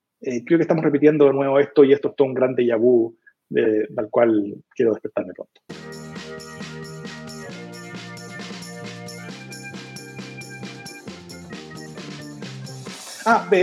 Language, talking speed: Spanish, 90 wpm